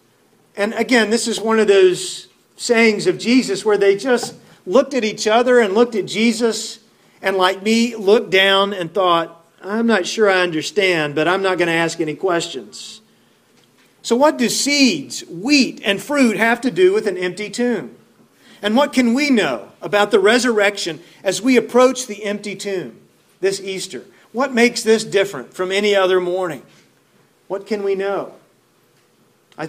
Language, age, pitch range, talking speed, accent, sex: English, 40-59, 180-230 Hz, 170 wpm, American, male